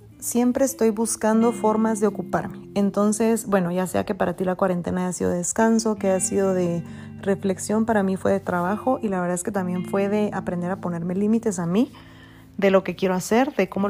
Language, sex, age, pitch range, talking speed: Spanish, female, 30-49, 175-205 Hz, 210 wpm